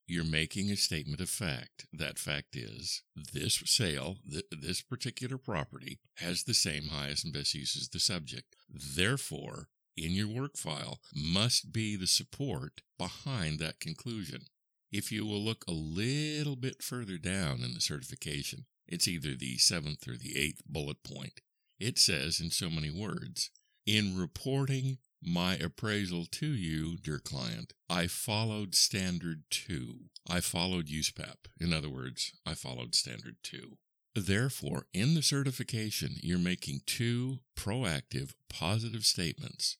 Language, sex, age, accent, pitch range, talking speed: English, male, 60-79, American, 80-115 Hz, 145 wpm